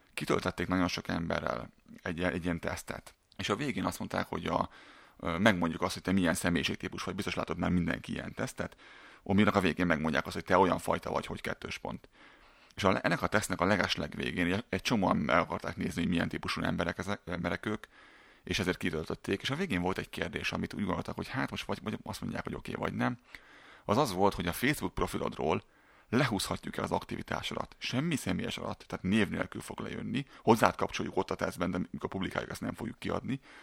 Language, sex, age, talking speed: Hungarian, male, 30-49, 200 wpm